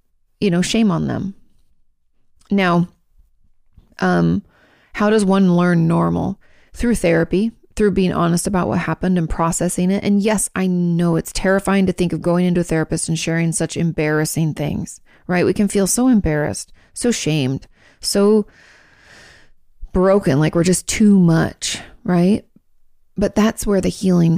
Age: 30-49